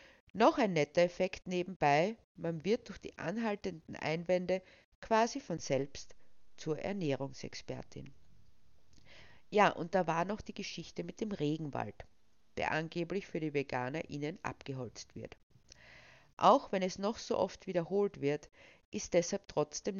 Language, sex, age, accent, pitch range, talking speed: German, female, 50-69, Austrian, 150-205 Hz, 135 wpm